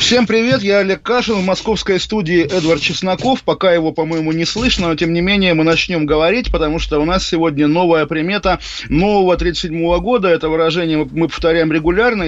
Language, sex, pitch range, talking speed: Russian, male, 150-185 Hz, 180 wpm